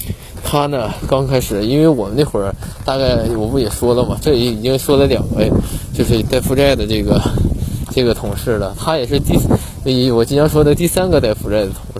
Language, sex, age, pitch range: Chinese, male, 20-39, 110-140 Hz